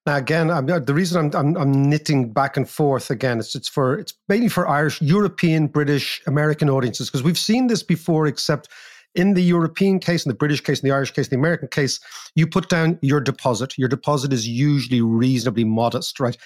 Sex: male